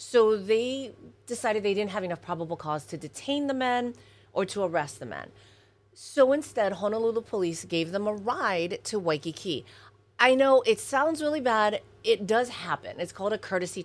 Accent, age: American, 30-49